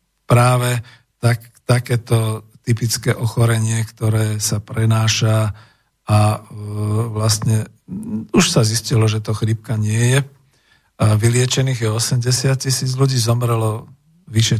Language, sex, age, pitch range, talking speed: Slovak, male, 50-69, 110-130 Hz, 105 wpm